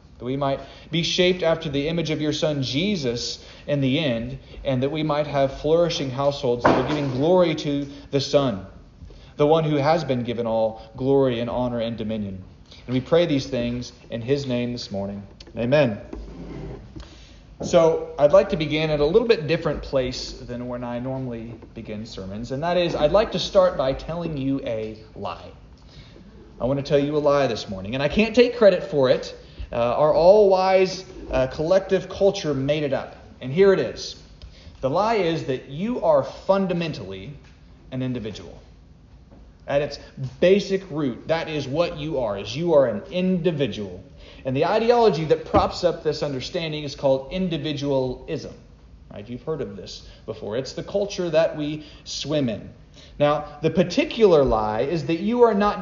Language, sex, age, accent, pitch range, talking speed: English, male, 30-49, American, 125-170 Hz, 175 wpm